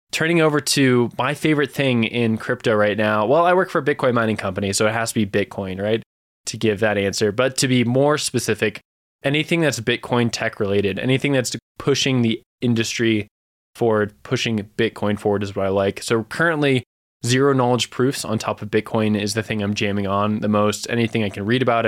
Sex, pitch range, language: male, 100-120 Hz, English